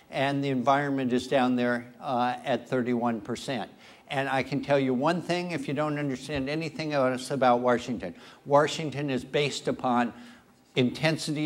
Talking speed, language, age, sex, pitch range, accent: 150 wpm, English, 60-79, male, 130-165 Hz, American